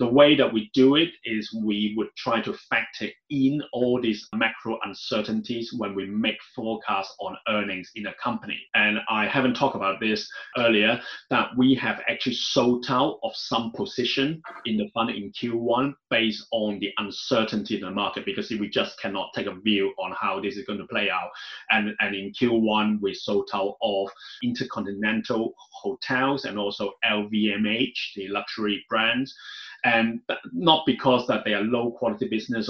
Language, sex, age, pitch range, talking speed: English, male, 30-49, 105-120 Hz, 175 wpm